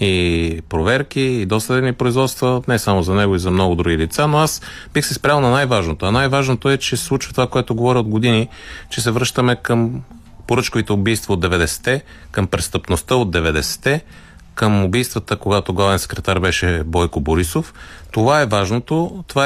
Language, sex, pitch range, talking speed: Bulgarian, male, 95-140 Hz, 175 wpm